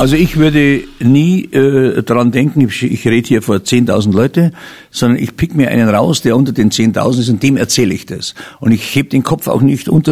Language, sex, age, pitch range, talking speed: German, male, 60-79, 115-145 Hz, 225 wpm